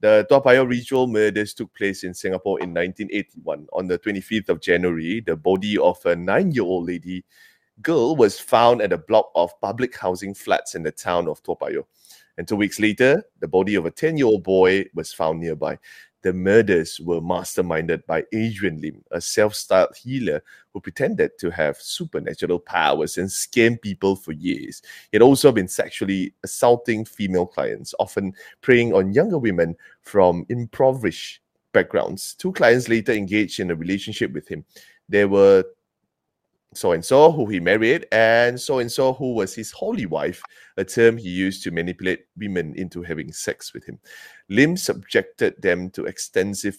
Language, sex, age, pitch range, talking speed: English, male, 20-39, 90-115 Hz, 160 wpm